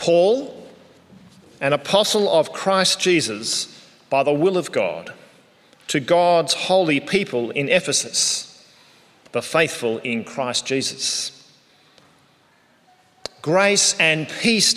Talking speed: 100 wpm